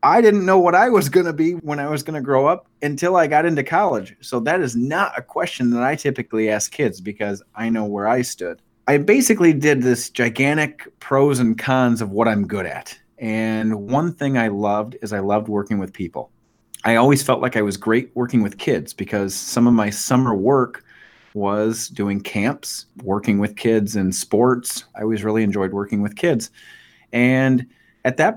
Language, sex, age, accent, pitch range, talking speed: English, male, 30-49, American, 105-125 Hz, 205 wpm